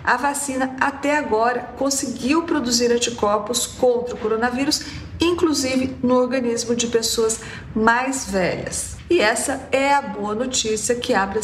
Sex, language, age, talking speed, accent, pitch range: female, Portuguese, 50-69, 135 wpm, Brazilian, 200-260 Hz